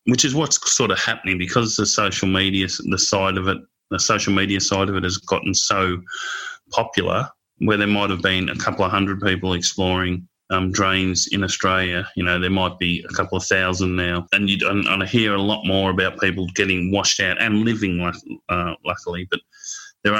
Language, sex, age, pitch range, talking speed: English, male, 30-49, 95-100 Hz, 205 wpm